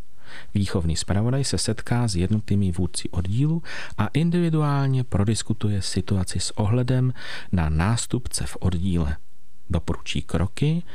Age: 40-59